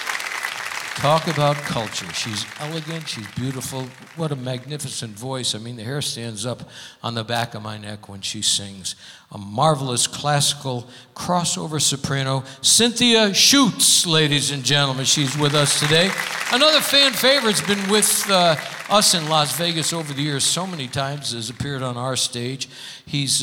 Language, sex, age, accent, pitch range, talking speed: English, male, 60-79, American, 130-185 Hz, 160 wpm